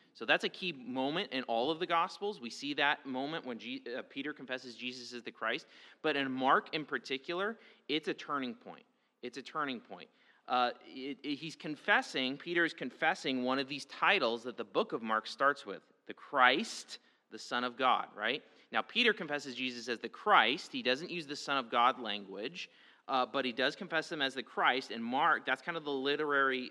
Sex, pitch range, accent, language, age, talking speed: male, 125-155 Hz, American, English, 30-49, 210 wpm